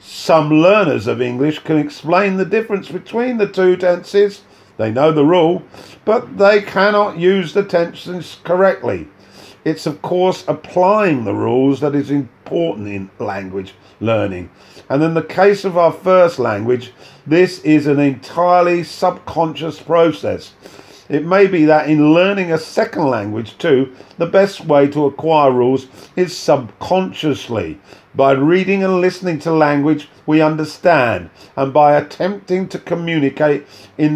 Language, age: English, 50-69